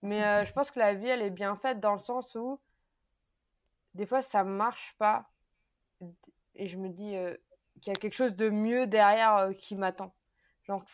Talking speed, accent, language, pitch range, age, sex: 215 wpm, French, French, 195-240 Hz, 20-39, female